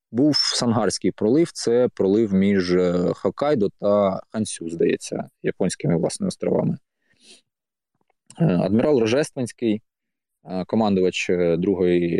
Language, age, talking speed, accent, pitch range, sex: Ukrainian, 20-39, 80 wpm, native, 95-125 Hz, male